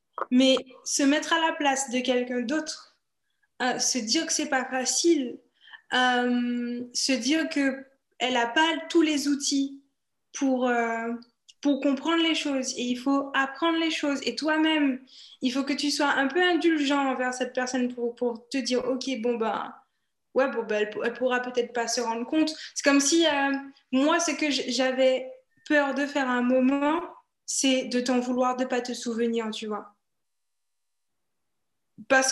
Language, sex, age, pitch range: French, female, 20-39, 245-290 Hz